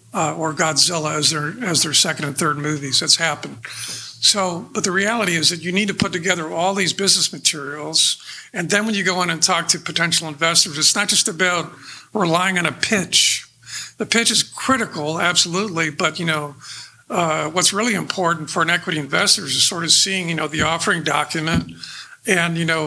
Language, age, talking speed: English, 50-69, 195 wpm